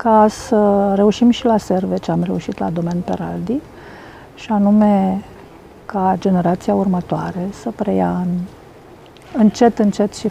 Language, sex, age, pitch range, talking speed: Romanian, female, 40-59, 190-245 Hz, 130 wpm